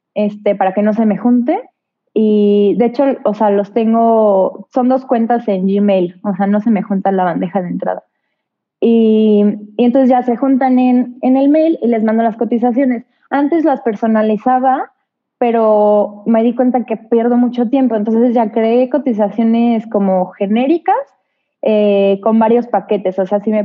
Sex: female